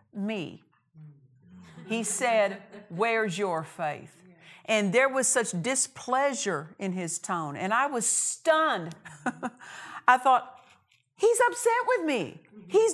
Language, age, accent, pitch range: English, 50-69, American, 170-250 Hz